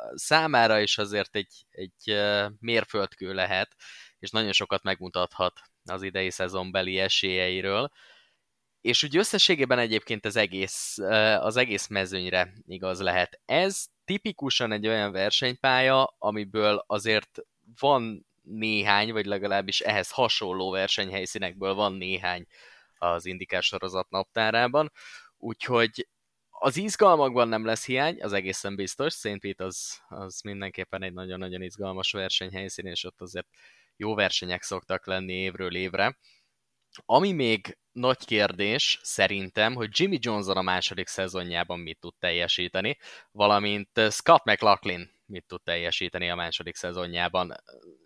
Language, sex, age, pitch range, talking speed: Hungarian, male, 20-39, 95-110 Hz, 120 wpm